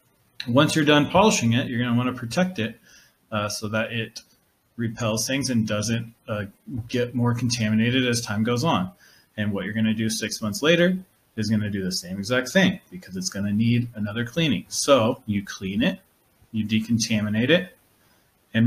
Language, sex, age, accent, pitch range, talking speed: English, male, 30-49, American, 110-135 Hz, 195 wpm